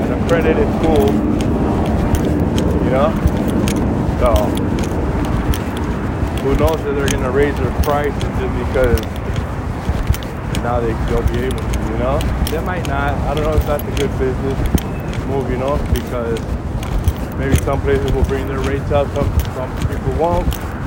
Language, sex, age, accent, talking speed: English, male, 20-39, American, 150 wpm